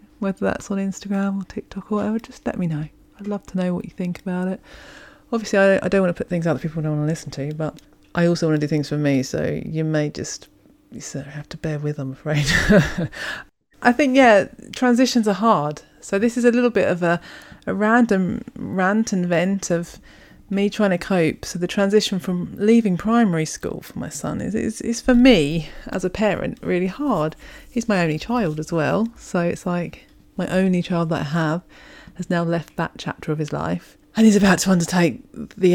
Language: English